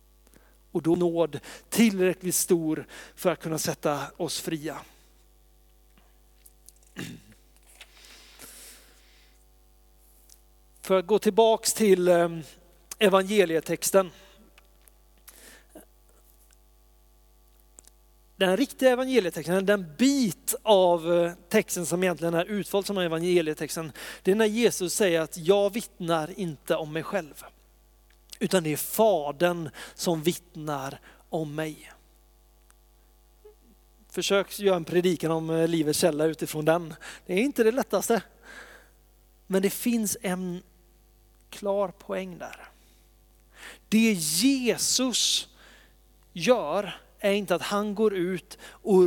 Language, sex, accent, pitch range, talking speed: Swedish, male, native, 160-200 Hz, 100 wpm